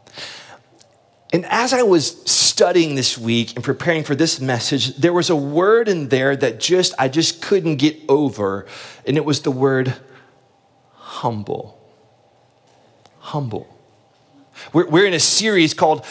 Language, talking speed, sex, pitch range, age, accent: English, 140 wpm, male, 145-195 Hz, 30-49, American